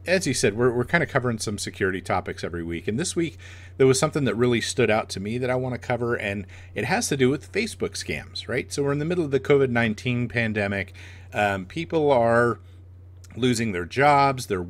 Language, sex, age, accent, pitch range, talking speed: English, male, 40-59, American, 95-130 Hz, 230 wpm